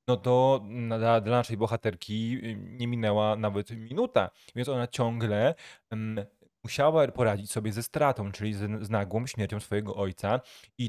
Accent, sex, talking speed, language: native, male, 130 wpm, Polish